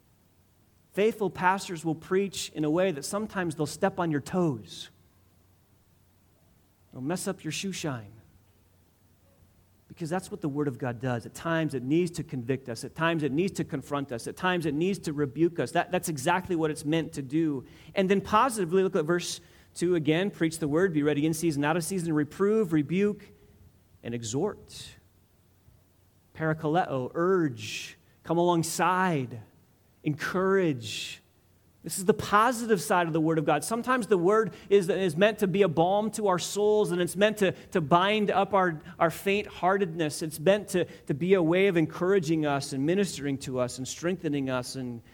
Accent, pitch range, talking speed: American, 115-180 Hz, 180 wpm